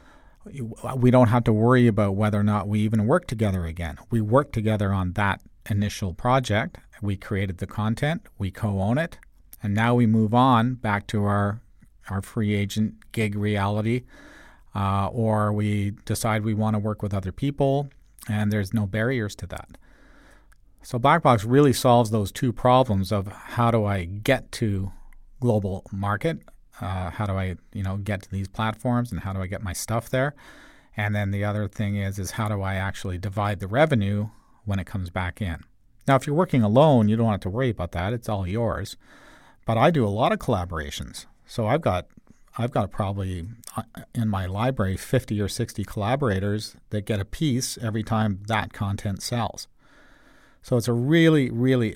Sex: male